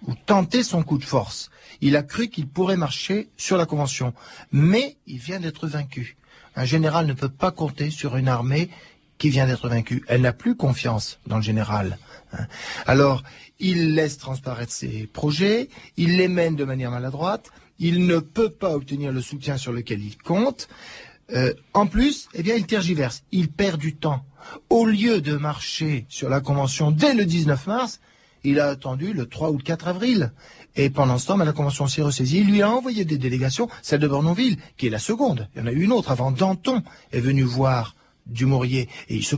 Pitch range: 130-180 Hz